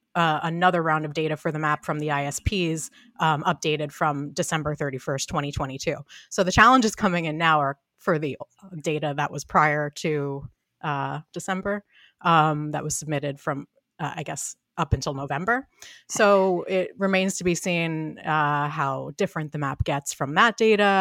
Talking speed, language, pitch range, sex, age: 170 wpm, English, 140-175 Hz, female, 30-49